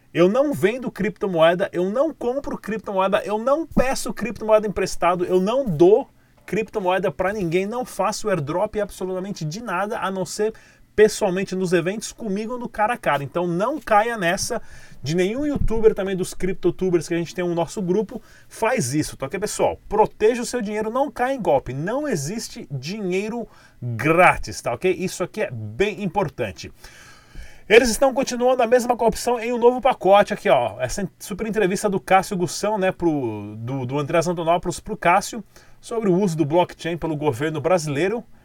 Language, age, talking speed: Portuguese, 30-49, 175 wpm